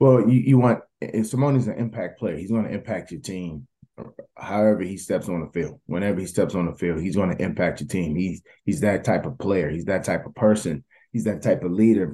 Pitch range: 85-100 Hz